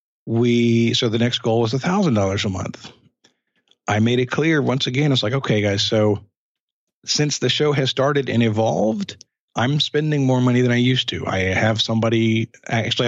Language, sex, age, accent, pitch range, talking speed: English, male, 50-69, American, 105-130 Hz, 180 wpm